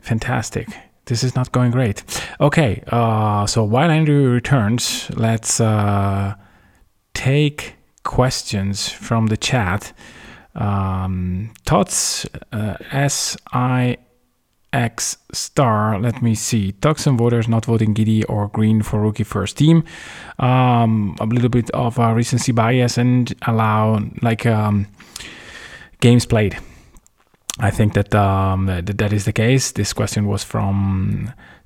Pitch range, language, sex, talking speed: 100-120 Hz, English, male, 125 wpm